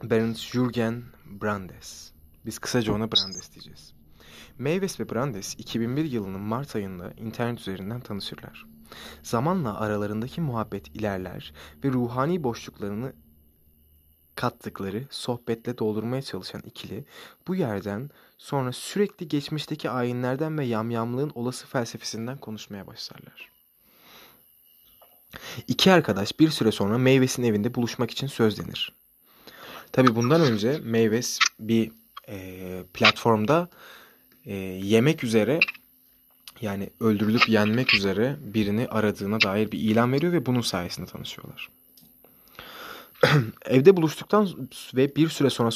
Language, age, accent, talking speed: Turkish, 30-49, native, 105 wpm